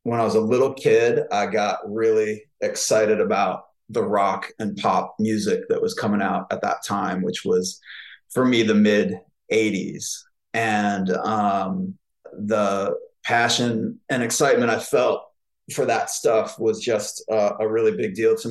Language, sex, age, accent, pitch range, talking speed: English, male, 30-49, American, 110-185 Hz, 155 wpm